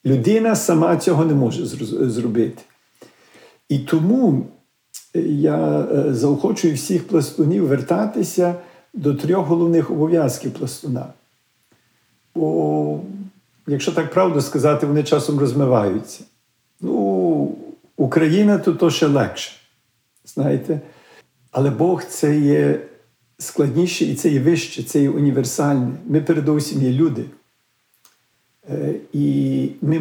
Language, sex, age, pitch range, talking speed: Ukrainian, male, 50-69, 130-170 Hz, 100 wpm